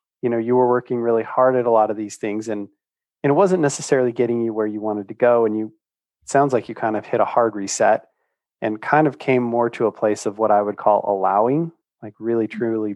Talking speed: 250 wpm